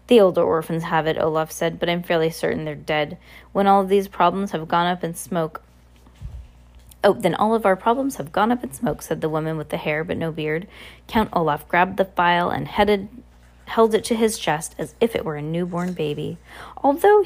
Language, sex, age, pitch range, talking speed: English, female, 20-39, 160-220 Hz, 215 wpm